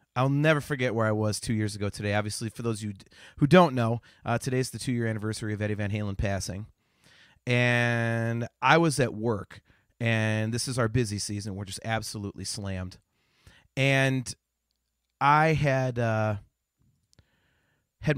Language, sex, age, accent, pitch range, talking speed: English, male, 30-49, American, 105-130 Hz, 160 wpm